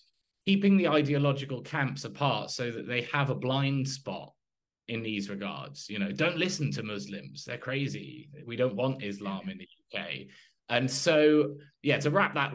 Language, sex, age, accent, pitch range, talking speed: English, male, 20-39, British, 105-145 Hz, 170 wpm